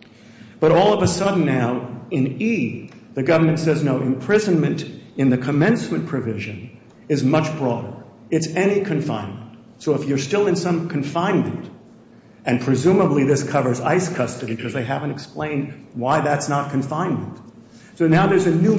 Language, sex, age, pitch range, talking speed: English, male, 50-69, 130-175 Hz, 155 wpm